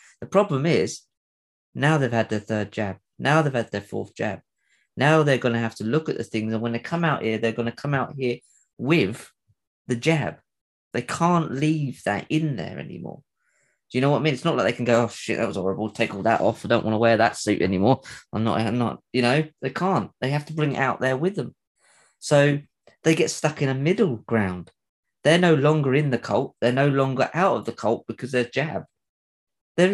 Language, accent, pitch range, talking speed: English, British, 115-150 Hz, 235 wpm